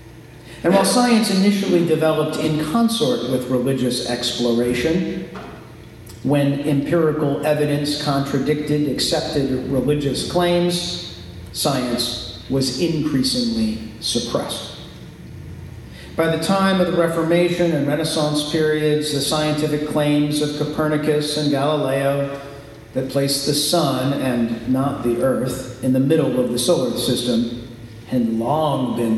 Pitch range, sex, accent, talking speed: 120-160 Hz, male, American, 115 wpm